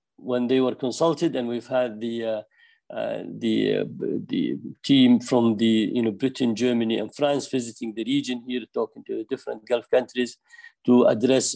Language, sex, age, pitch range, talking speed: English, male, 50-69, 115-145 Hz, 170 wpm